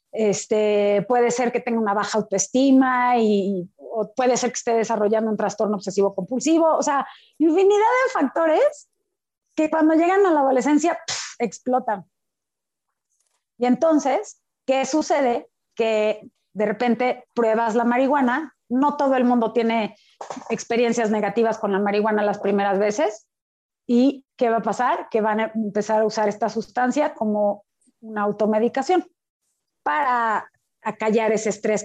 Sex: female